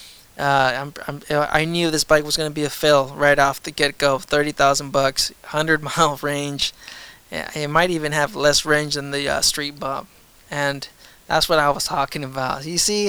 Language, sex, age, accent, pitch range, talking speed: English, male, 20-39, American, 145-170 Hz, 195 wpm